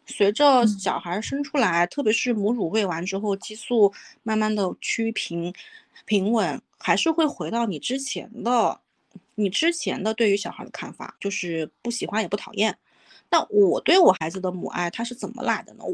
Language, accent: Chinese, native